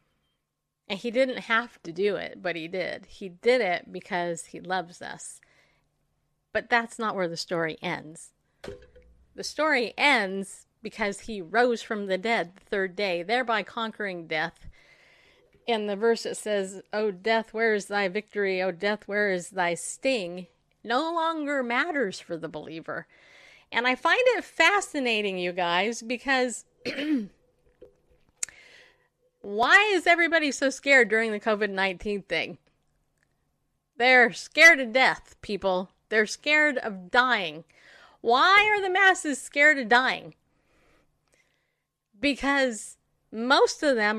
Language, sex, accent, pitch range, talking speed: English, female, American, 195-260 Hz, 135 wpm